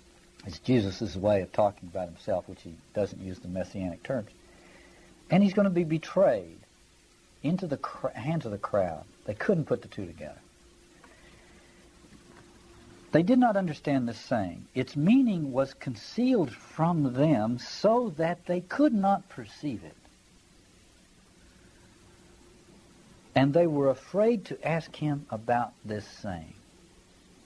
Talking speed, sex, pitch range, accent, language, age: 135 wpm, male, 105-160 Hz, American, English, 60-79